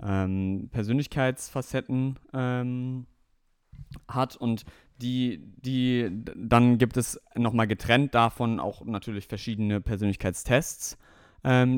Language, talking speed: German, 85 wpm